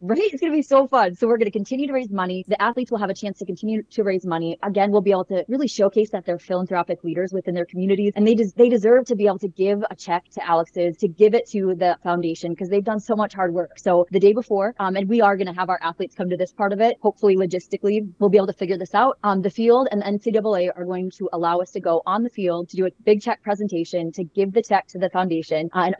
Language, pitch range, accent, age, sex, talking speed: English, 180-215 Hz, American, 20-39, female, 290 wpm